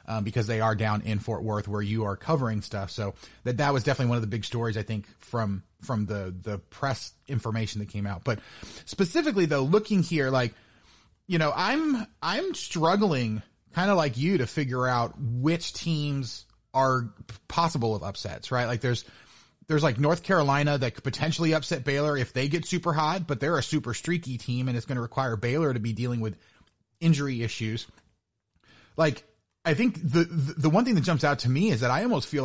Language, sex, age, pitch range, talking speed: English, male, 30-49, 110-155 Hz, 205 wpm